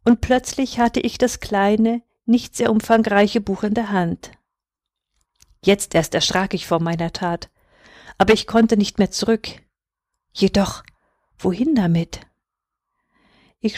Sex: female